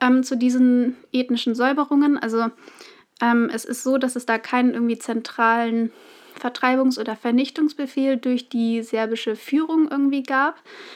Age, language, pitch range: 30-49, German, 225-260 Hz